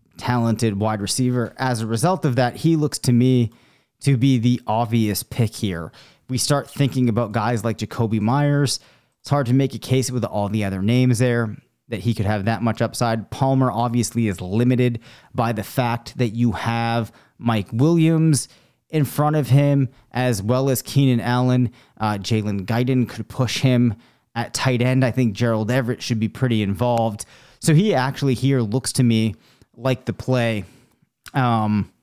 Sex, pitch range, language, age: male, 110-130 Hz, English, 30-49